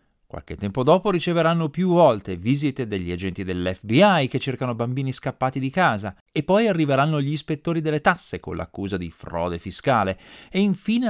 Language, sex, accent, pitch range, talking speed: Italian, male, native, 100-160 Hz, 160 wpm